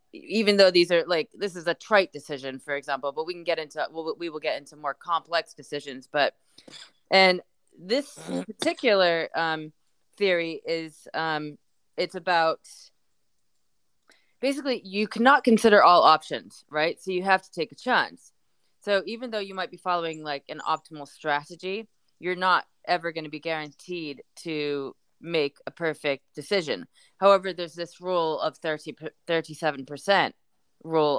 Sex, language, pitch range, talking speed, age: female, English, 150-185 Hz, 155 wpm, 20-39